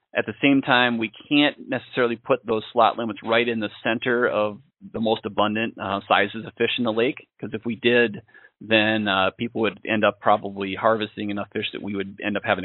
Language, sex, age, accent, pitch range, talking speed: English, male, 30-49, American, 105-125 Hz, 220 wpm